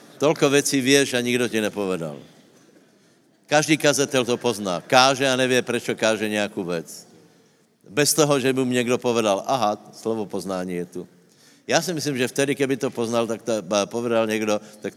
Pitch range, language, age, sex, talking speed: 95-120 Hz, Slovak, 60-79, male, 170 wpm